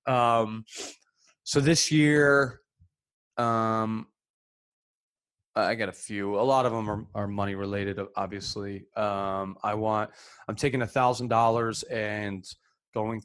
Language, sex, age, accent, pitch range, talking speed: English, male, 20-39, American, 95-110 Hz, 125 wpm